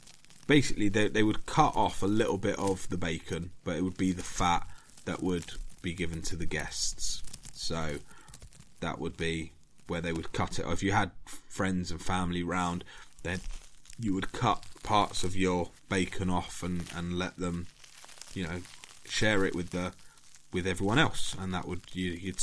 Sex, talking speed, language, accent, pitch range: male, 180 wpm, English, British, 90-105 Hz